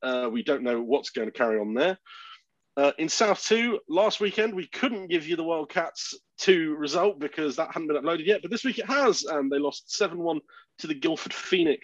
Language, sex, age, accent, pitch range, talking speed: English, male, 30-49, British, 135-205 Hz, 220 wpm